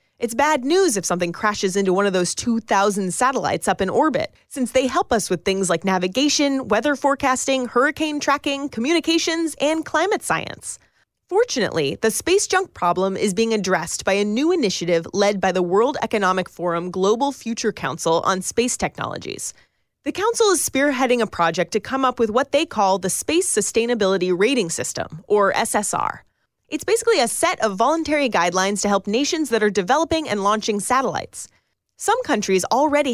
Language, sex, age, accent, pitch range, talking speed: English, female, 30-49, American, 195-295 Hz, 170 wpm